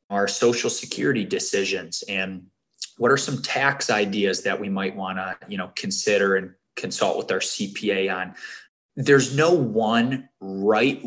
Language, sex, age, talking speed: English, male, 20-39, 150 wpm